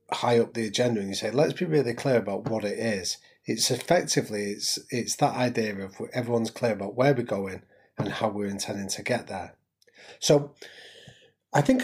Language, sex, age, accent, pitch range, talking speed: English, male, 30-49, British, 105-125 Hz, 195 wpm